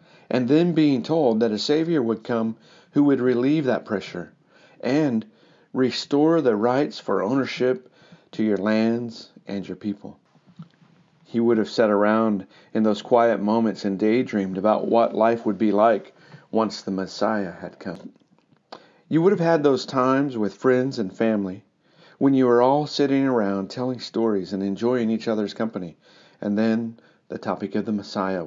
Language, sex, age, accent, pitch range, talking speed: English, male, 40-59, American, 100-130 Hz, 165 wpm